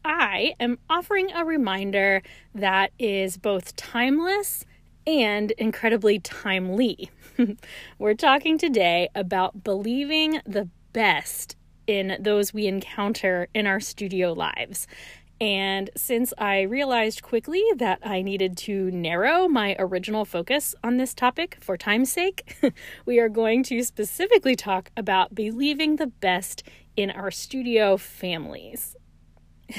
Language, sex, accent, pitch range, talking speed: English, female, American, 195-250 Hz, 120 wpm